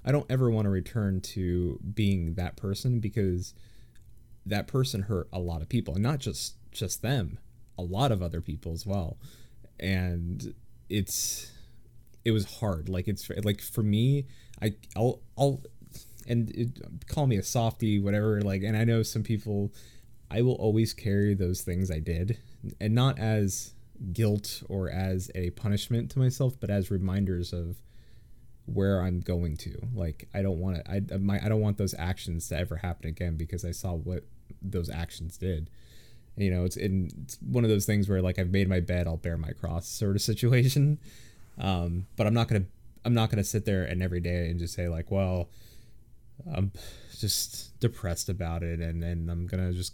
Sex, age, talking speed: male, 20-39, 185 wpm